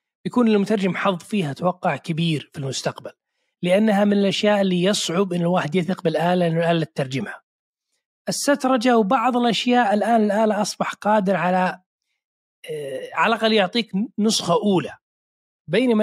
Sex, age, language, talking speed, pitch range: male, 30-49, Arabic, 120 wpm, 165-225 Hz